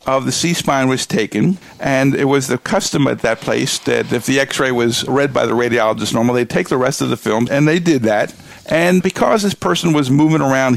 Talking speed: 230 wpm